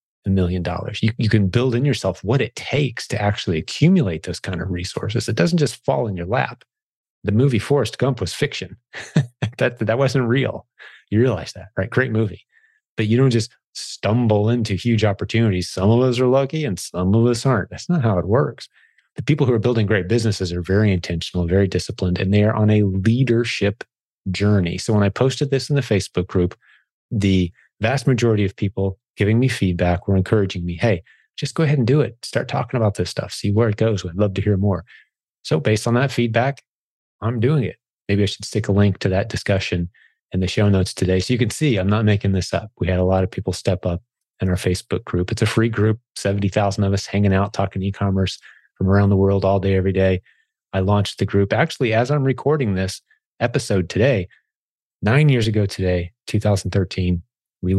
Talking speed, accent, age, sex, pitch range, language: 210 wpm, American, 30-49, male, 95-120 Hz, English